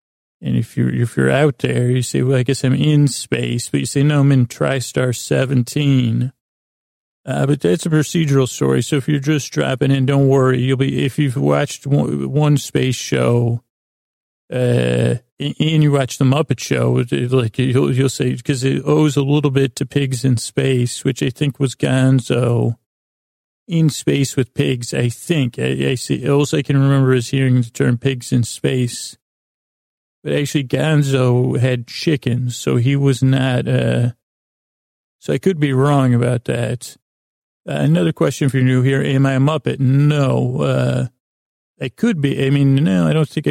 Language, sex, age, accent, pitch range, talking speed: English, male, 40-59, American, 120-140 Hz, 180 wpm